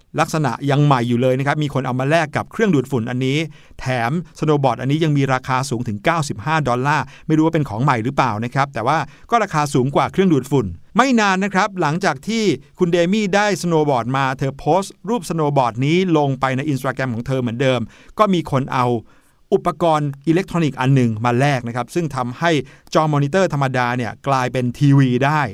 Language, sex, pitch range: Thai, male, 135-175 Hz